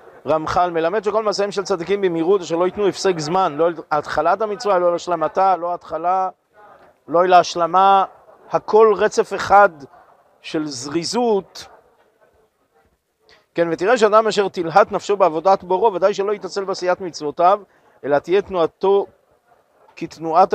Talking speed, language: 125 wpm, Hebrew